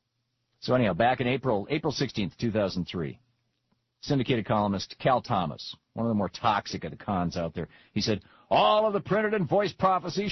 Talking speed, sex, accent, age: 180 wpm, male, American, 50-69